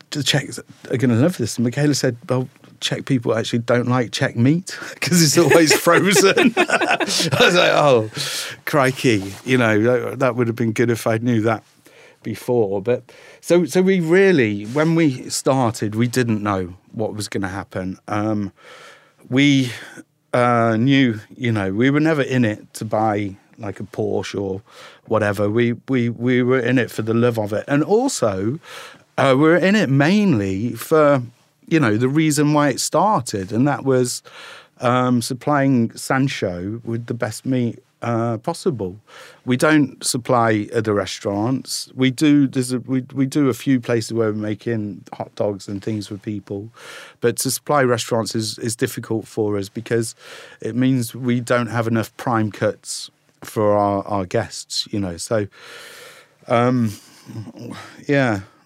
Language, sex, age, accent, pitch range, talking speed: Czech, male, 50-69, British, 110-135 Hz, 165 wpm